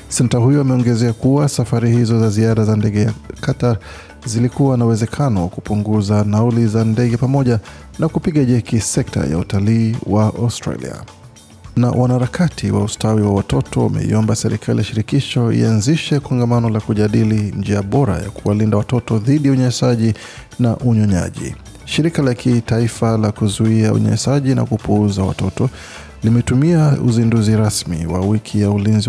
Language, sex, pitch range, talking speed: Swahili, male, 105-125 Hz, 135 wpm